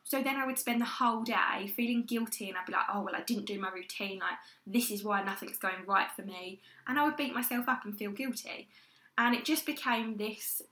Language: English